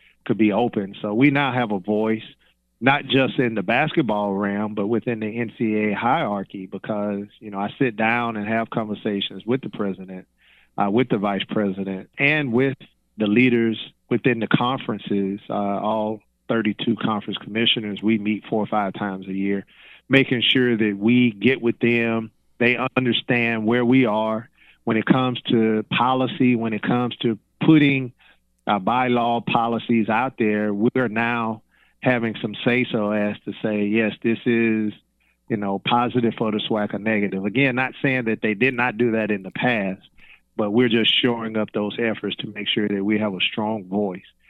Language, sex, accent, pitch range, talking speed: English, male, American, 105-120 Hz, 175 wpm